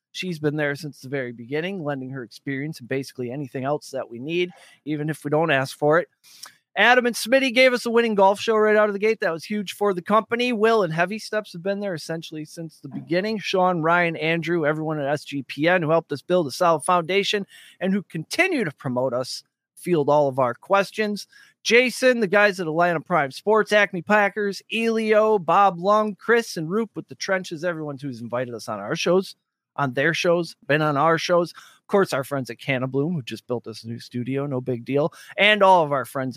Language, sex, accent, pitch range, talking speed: English, male, American, 140-205 Hz, 220 wpm